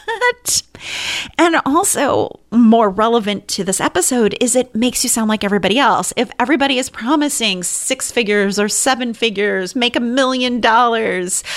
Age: 30-49